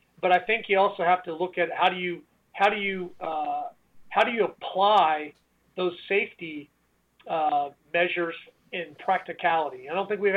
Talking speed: 175 wpm